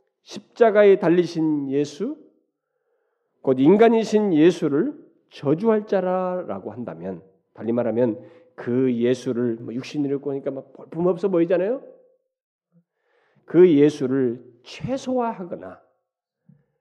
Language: Korean